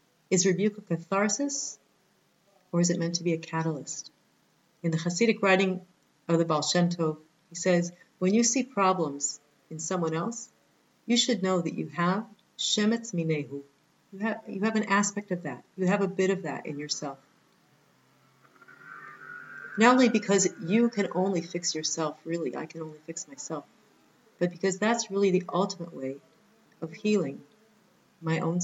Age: 40-59